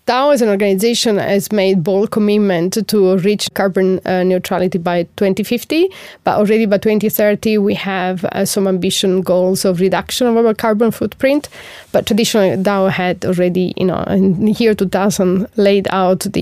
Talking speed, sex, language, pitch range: 165 wpm, female, English, 190-220 Hz